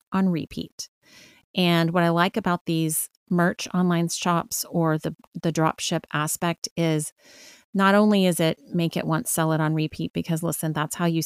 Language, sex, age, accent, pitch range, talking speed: English, female, 30-49, American, 160-195 Hz, 175 wpm